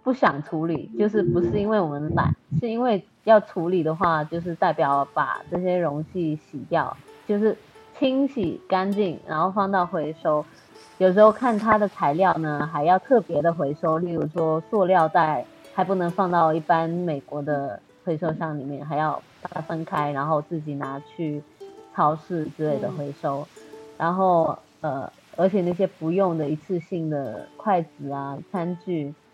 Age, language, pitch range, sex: 20-39, Chinese, 150-195 Hz, female